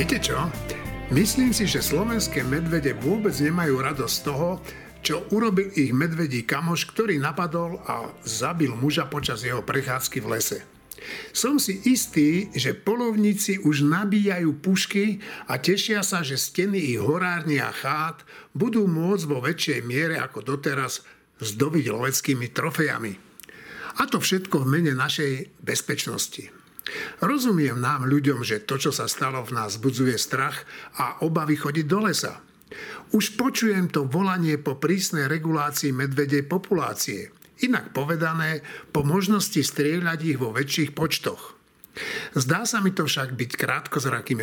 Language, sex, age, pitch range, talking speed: Slovak, male, 60-79, 140-185 Hz, 140 wpm